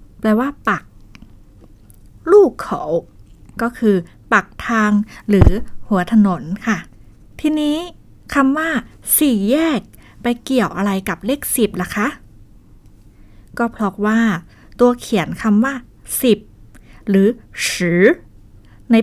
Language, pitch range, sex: Thai, 185-255 Hz, female